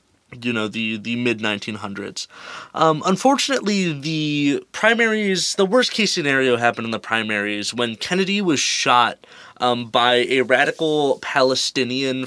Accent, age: American, 20-39